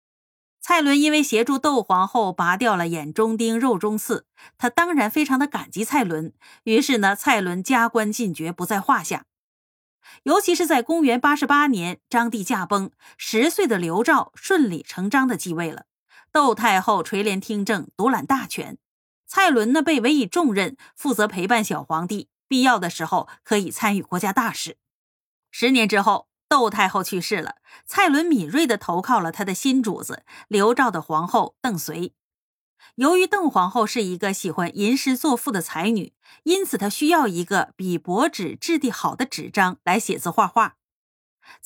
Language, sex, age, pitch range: Chinese, female, 30-49, 190-270 Hz